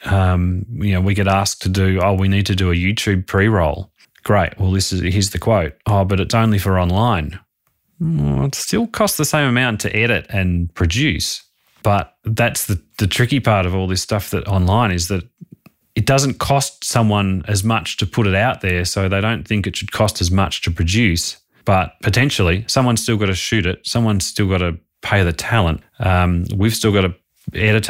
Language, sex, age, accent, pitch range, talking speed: English, male, 30-49, Australian, 90-110 Hz, 230 wpm